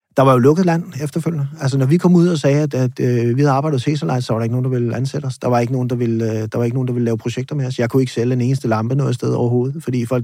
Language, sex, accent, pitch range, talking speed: Danish, male, native, 125-150 Hz, 335 wpm